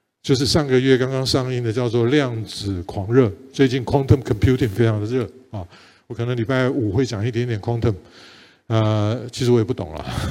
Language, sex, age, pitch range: Chinese, male, 50-69, 115-150 Hz